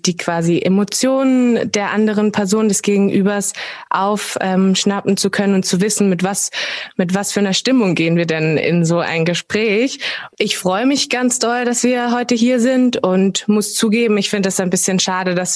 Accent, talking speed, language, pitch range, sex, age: German, 190 wpm, German, 185-230 Hz, female, 20-39